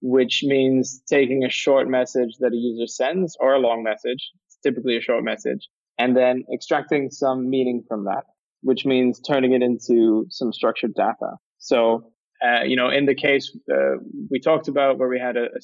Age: 20-39